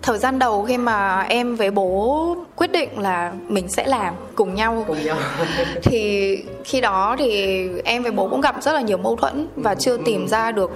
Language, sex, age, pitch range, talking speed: Vietnamese, female, 20-39, 190-245 Hz, 195 wpm